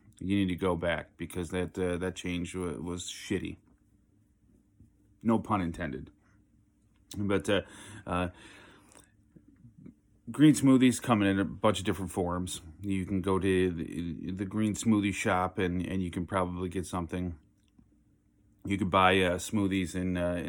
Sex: male